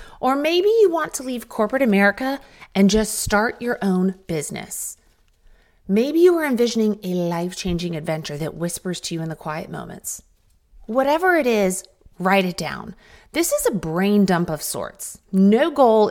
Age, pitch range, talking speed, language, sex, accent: 30-49, 180-275 Hz, 165 wpm, English, female, American